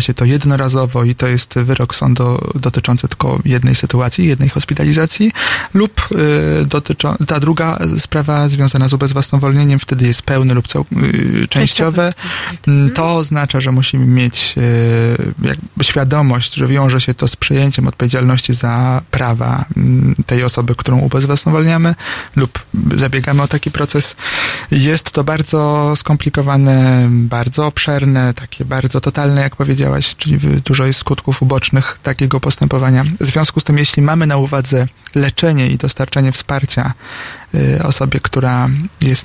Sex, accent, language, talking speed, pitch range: male, native, Polish, 130 wpm, 125-145 Hz